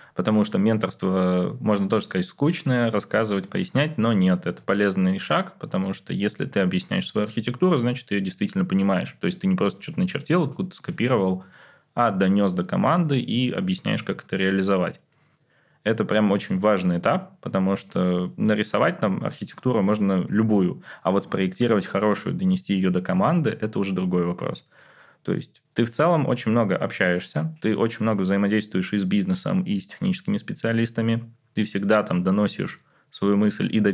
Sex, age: male, 20-39